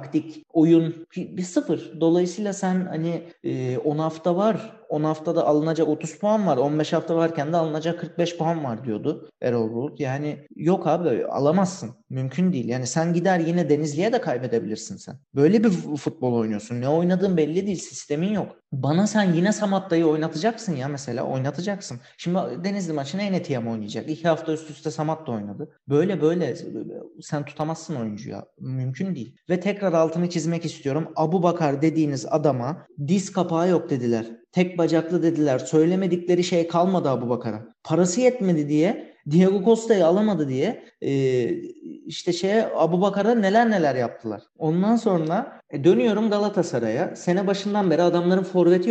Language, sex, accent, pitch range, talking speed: Turkish, male, native, 150-195 Hz, 150 wpm